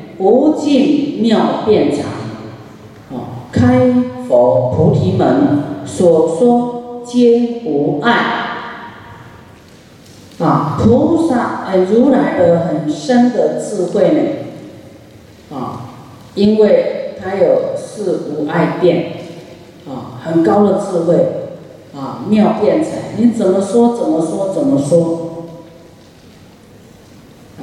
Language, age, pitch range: Chinese, 40-59, 140-195 Hz